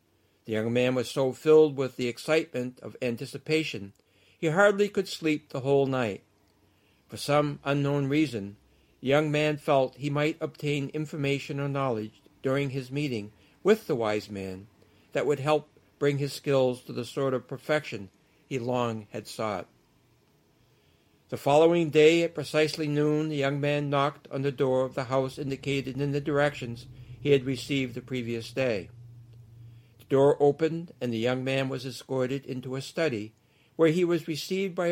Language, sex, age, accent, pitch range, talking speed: English, male, 60-79, American, 120-155 Hz, 165 wpm